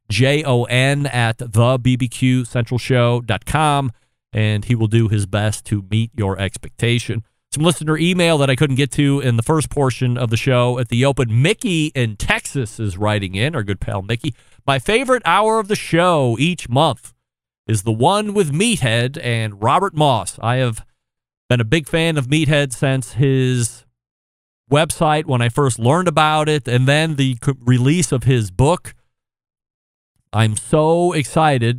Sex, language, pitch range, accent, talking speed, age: male, English, 115-145 Hz, American, 160 wpm, 40-59